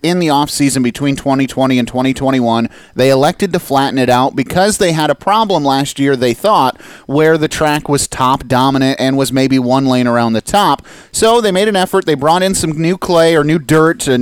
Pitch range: 130-165 Hz